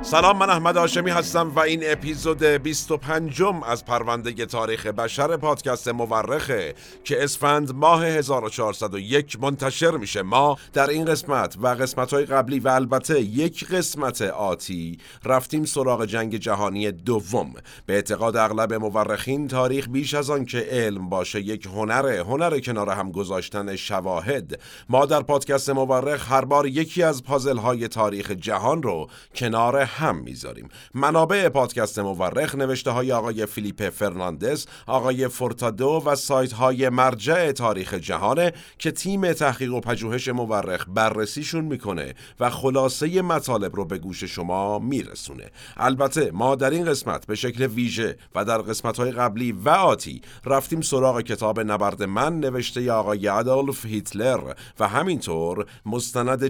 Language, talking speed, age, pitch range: Persian, 140 wpm, 50-69, 110-145 Hz